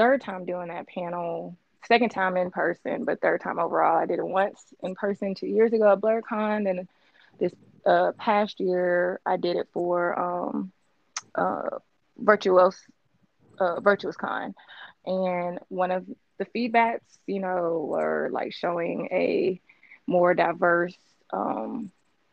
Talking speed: 140 wpm